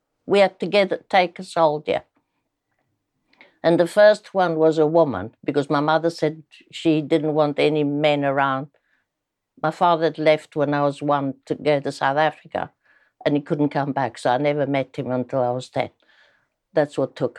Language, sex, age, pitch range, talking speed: English, female, 60-79, 145-180 Hz, 185 wpm